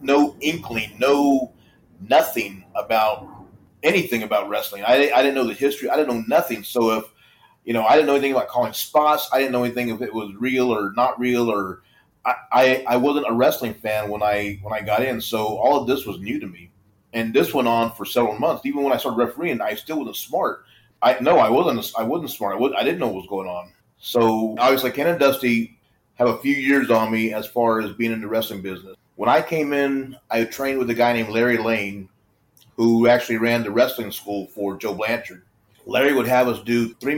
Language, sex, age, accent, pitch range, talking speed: English, male, 30-49, American, 110-130 Hz, 225 wpm